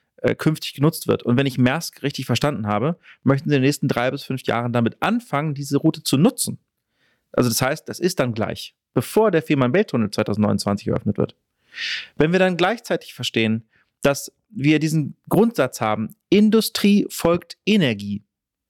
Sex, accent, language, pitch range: male, German, Danish, 125-170 Hz